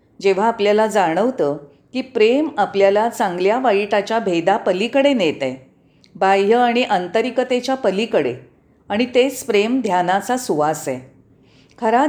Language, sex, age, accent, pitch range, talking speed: Marathi, female, 40-59, native, 180-240 Hz, 110 wpm